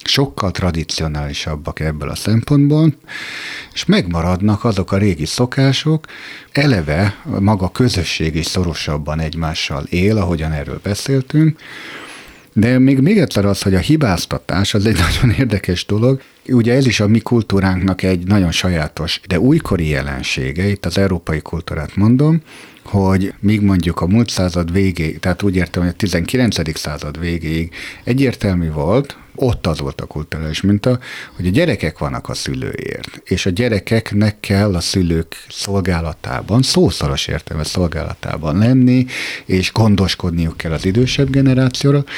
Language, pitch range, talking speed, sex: Hungarian, 85-120 Hz, 140 wpm, male